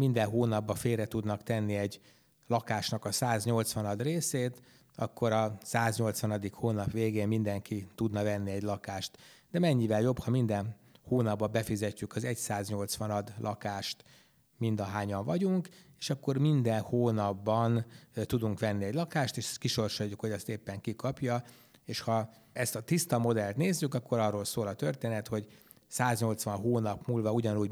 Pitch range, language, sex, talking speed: 105-125 Hz, Hungarian, male, 135 wpm